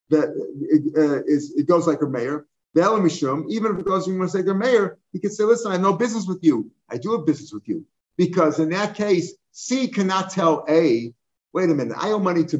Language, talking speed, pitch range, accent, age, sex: English, 255 wpm, 145-180 Hz, American, 50-69, male